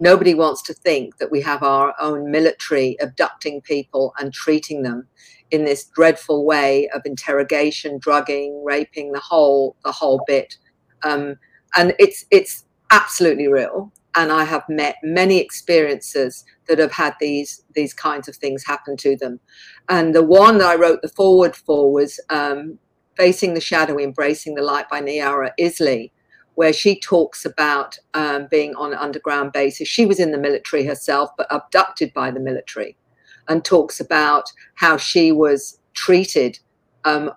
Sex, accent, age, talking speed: female, British, 50-69, 160 wpm